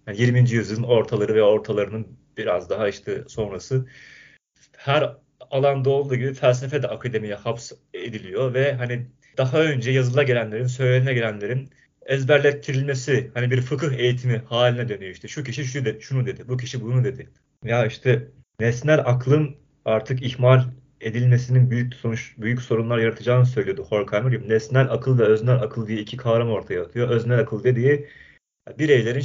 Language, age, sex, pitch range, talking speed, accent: Turkish, 40-59, male, 115-135 Hz, 150 wpm, native